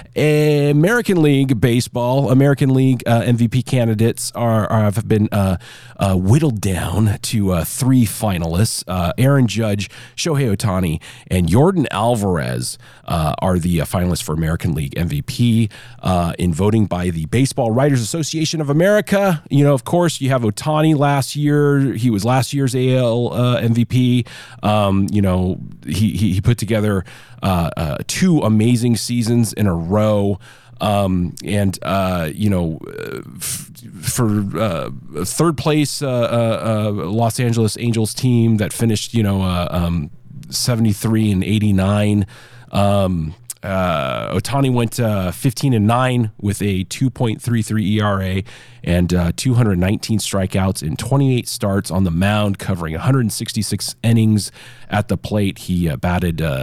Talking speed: 145 wpm